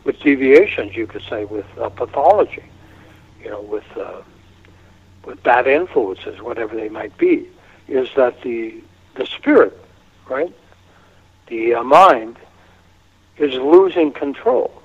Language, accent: English, American